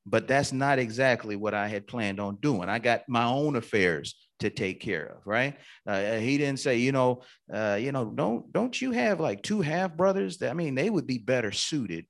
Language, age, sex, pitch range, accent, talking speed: English, 30-49, male, 105-135 Hz, American, 225 wpm